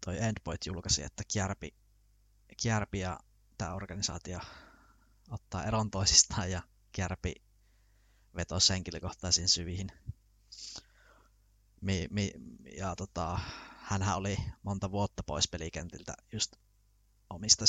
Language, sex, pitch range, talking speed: Finnish, male, 90-100 Hz, 95 wpm